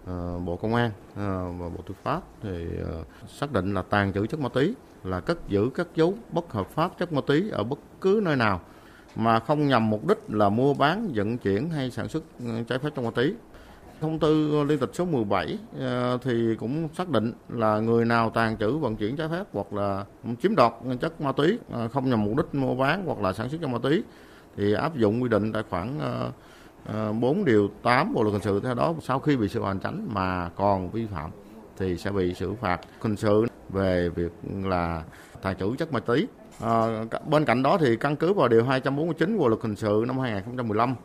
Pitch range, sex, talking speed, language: 100-135 Hz, male, 210 wpm, Vietnamese